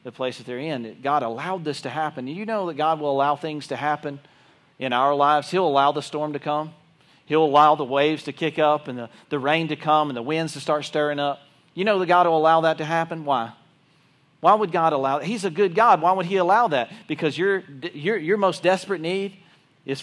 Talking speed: 245 wpm